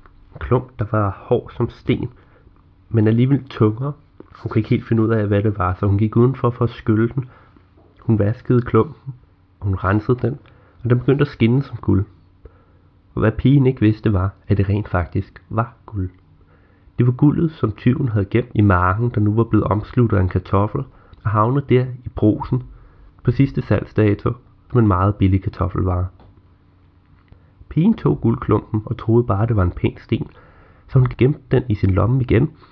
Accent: native